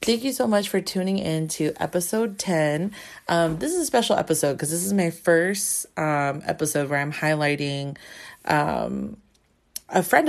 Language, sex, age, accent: English, female, 30-49, American